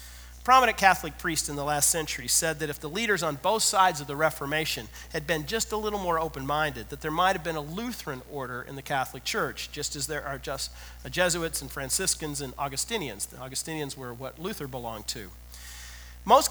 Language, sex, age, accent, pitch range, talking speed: English, male, 40-59, American, 135-180 Hz, 200 wpm